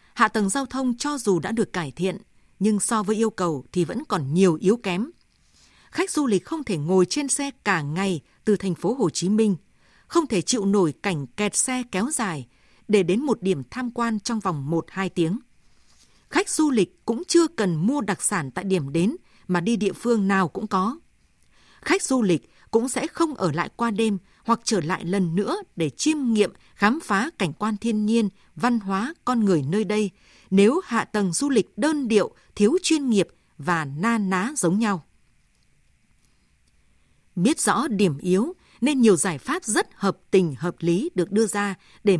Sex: female